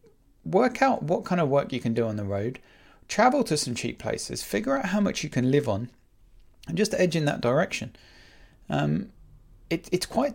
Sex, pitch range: male, 125-205 Hz